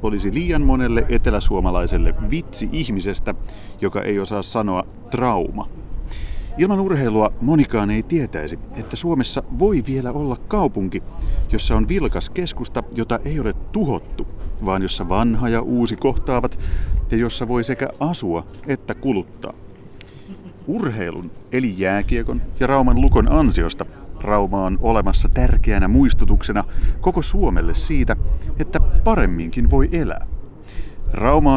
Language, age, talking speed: Finnish, 30-49, 120 wpm